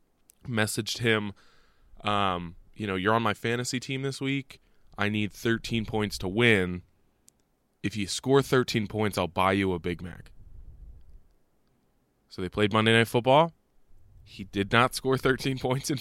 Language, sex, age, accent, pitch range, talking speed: English, male, 20-39, American, 95-115 Hz, 155 wpm